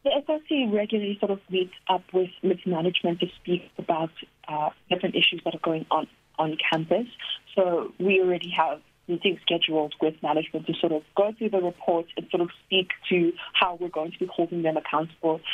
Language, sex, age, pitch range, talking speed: English, female, 30-49, 160-190 Hz, 190 wpm